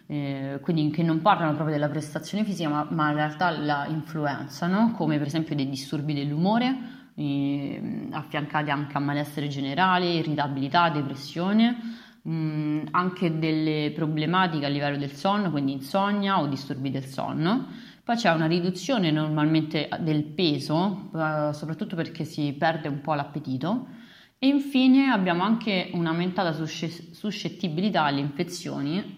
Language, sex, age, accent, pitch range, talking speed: Italian, female, 30-49, native, 150-180 Hz, 125 wpm